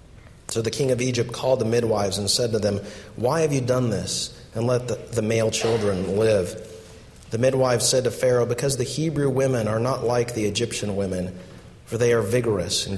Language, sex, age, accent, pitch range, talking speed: English, male, 40-59, American, 110-130 Hz, 205 wpm